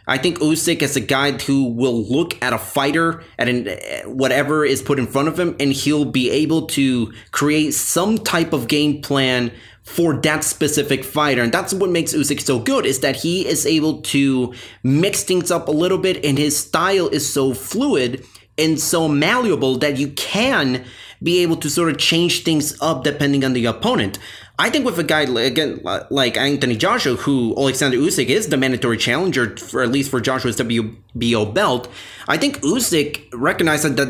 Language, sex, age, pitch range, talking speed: English, male, 30-49, 125-155 Hz, 185 wpm